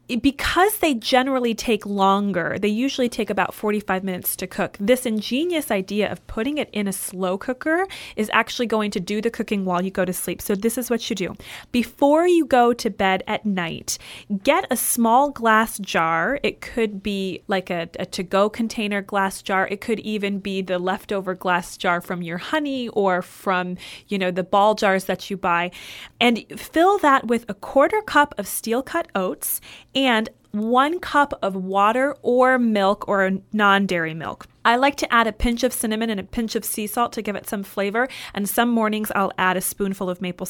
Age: 30-49